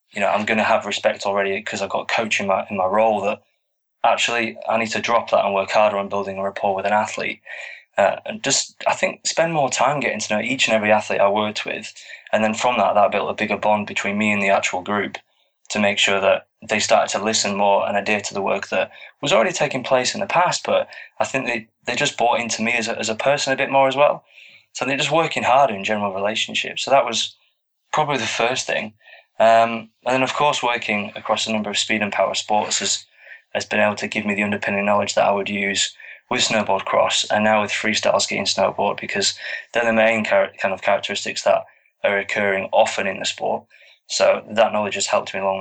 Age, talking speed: 20-39, 240 wpm